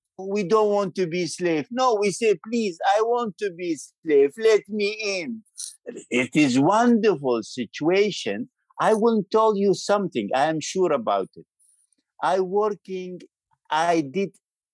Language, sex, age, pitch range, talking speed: English, male, 50-69, 175-240 Hz, 150 wpm